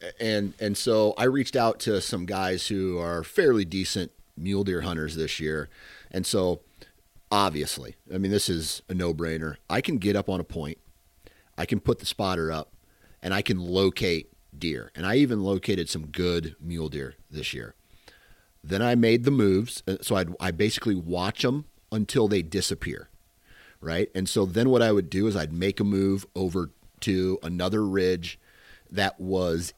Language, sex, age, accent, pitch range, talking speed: English, male, 40-59, American, 85-110 Hz, 180 wpm